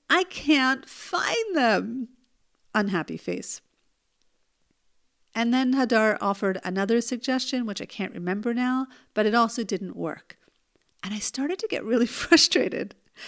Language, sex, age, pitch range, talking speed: English, female, 50-69, 210-285 Hz, 130 wpm